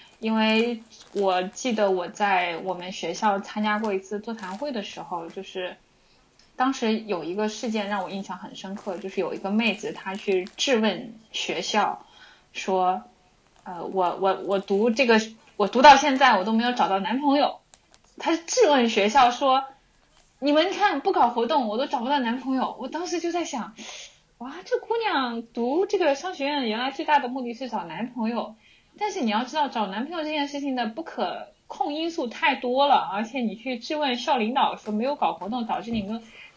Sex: female